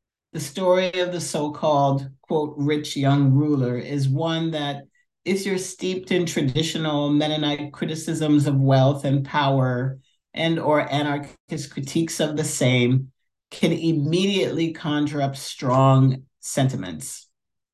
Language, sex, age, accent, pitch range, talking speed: English, male, 50-69, American, 135-165 Hz, 120 wpm